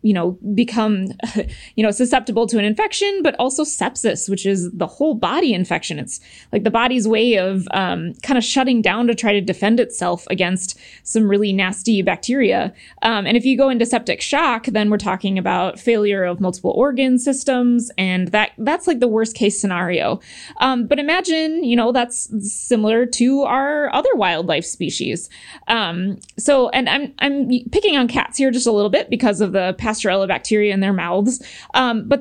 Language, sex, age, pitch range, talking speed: English, female, 20-39, 200-265 Hz, 185 wpm